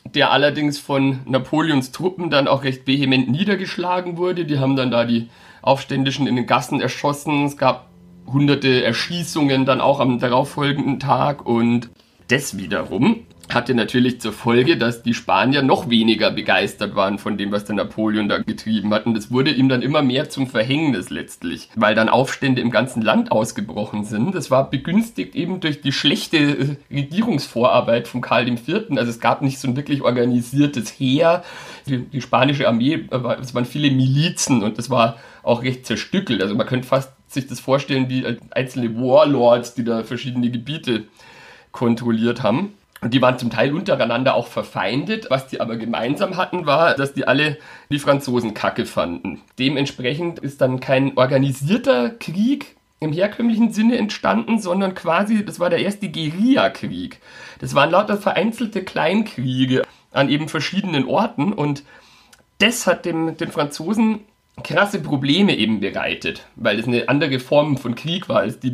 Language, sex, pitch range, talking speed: German, male, 120-165 Hz, 165 wpm